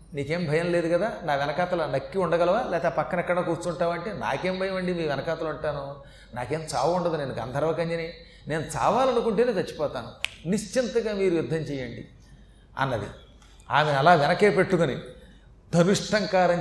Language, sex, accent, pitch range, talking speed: Telugu, male, native, 170-220 Hz, 125 wpm